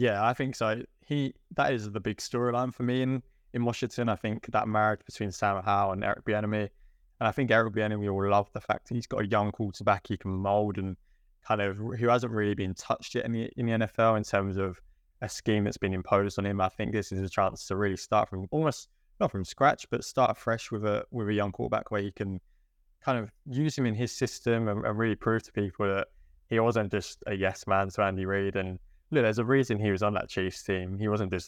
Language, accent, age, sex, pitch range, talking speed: English, British, 20-39, male, 95-115 Hz, 250 wpm